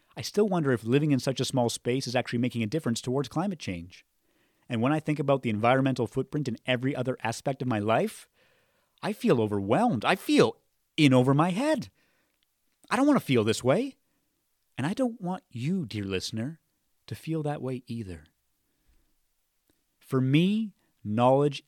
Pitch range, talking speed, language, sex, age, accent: 110-150 Hz, 175 wpm, English, male, 30-49, American